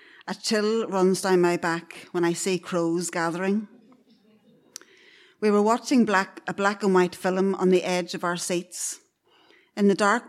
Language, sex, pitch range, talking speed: English, female, 185-230 Hz, 170 wpm